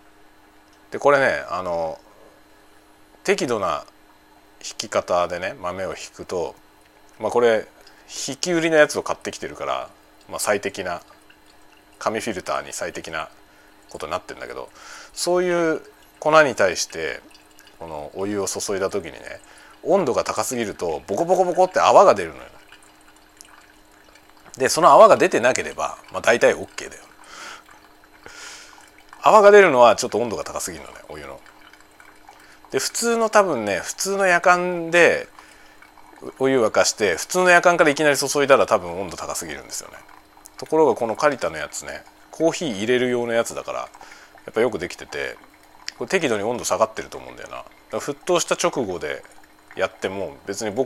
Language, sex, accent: Japanese, male, native